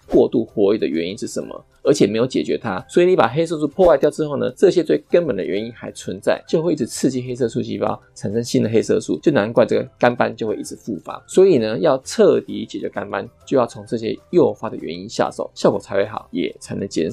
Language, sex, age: Chinese, male, 20-39